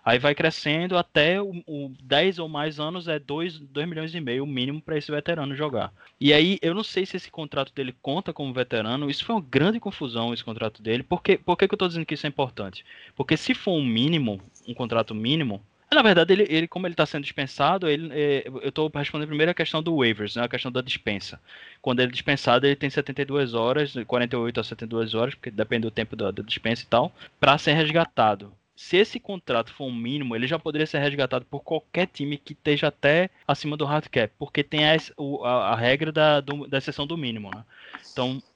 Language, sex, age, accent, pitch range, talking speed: Portuguese, male, 20-39, Brazilian, 125-155 Hz, 215 wpm